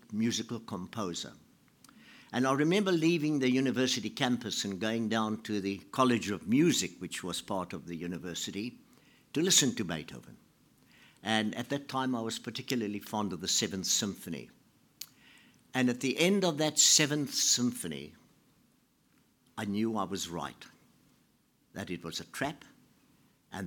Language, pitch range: English, 100-130 Hz